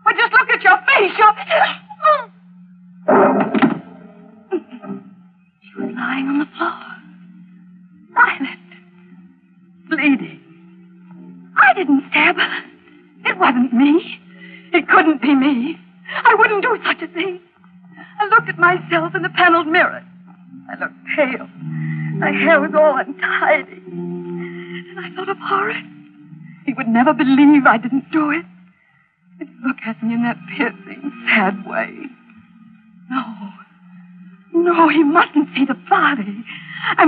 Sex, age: female, 40-59